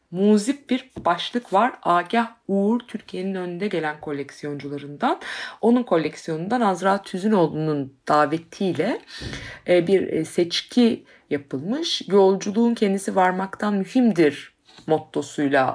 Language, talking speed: Turkish, 90 wpm